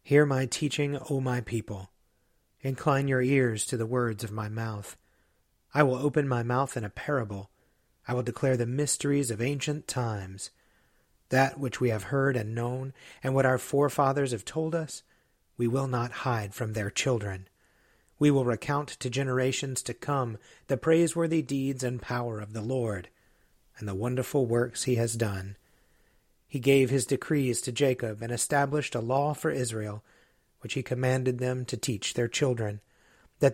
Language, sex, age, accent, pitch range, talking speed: English, male, 40-59, American, 115-140 Hz, 170 wpm